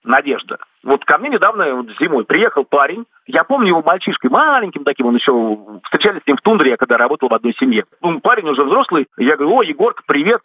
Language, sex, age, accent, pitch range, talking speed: Russian, male, 50-69, native, 145-225 Hz, 215 wpm